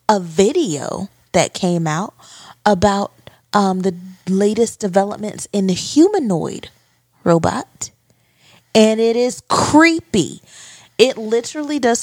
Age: 20-39